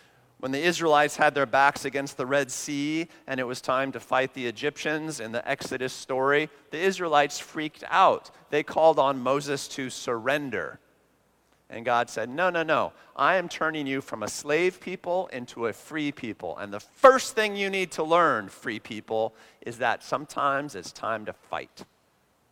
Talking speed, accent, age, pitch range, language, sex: 180 wpm, American, 40-59, 130-160 Hz, English, male